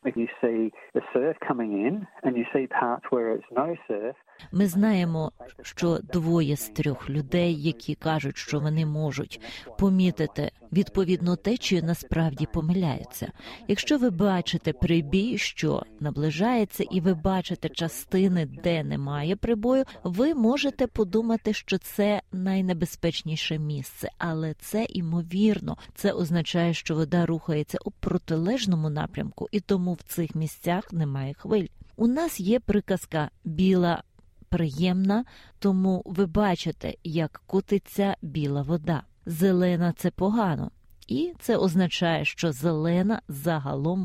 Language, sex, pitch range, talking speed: Ukrainian, female, 160-200 Hz, 105 wpm